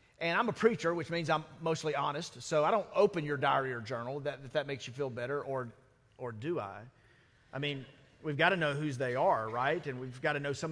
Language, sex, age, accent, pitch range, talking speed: English, male, 40-59, American, 135-185 Hz, 240 wpm